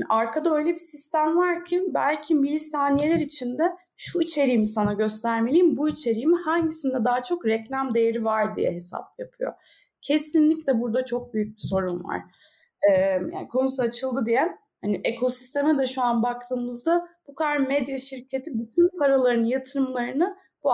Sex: female